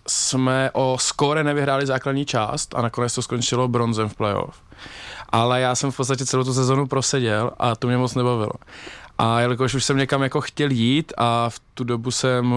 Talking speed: 190 wpm